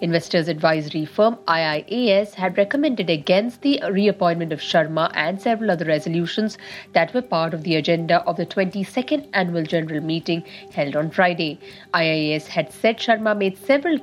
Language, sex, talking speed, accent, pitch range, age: English, female, 155 wpm, Indian, 165-205 Hz, 50-69